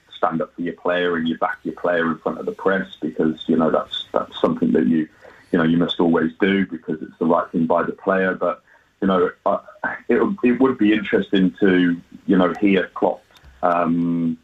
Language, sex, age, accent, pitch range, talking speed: English, male, 30-49, British, 90-100 Hz, 215 wpm